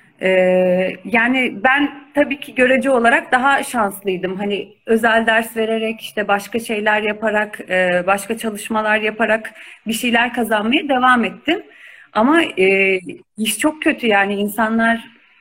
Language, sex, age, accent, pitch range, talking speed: Turkish, female, 40-59, native, 195-255 Hz, 115 wpm